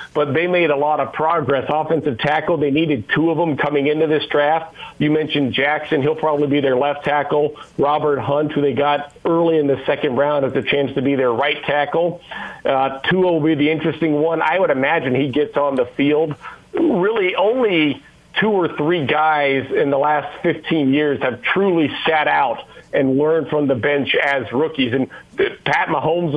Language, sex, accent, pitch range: English, male, American, 140-160 Hz